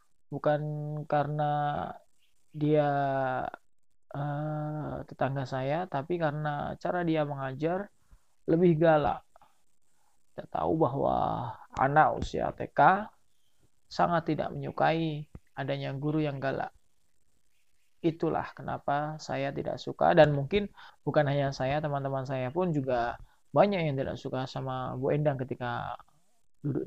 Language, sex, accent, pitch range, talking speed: Indonesian, male, native, 130-160 Hz, 110 wpm